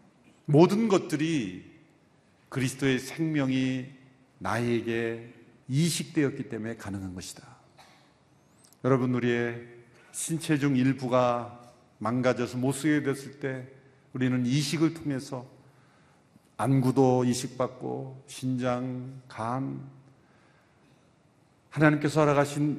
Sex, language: male, Korean